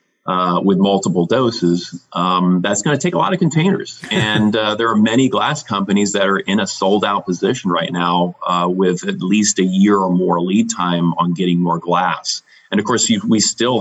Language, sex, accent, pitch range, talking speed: English, male, American, 90-105 Hz, 210 wpm